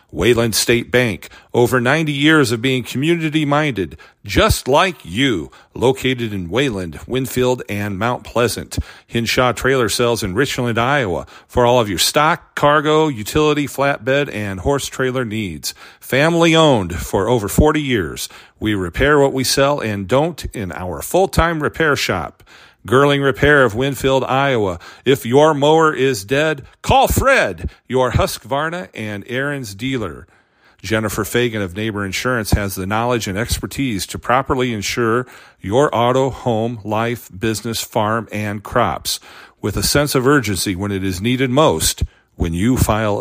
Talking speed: 145 wpm